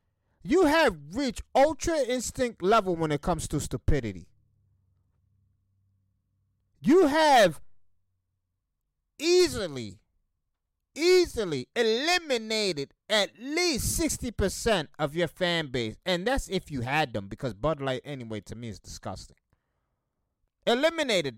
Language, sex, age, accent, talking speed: English, male, 30-49, American, 105 wpm